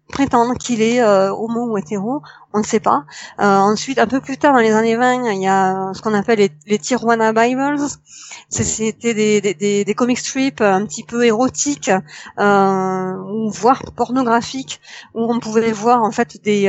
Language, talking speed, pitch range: French, 195 wpm, 195-240 Hz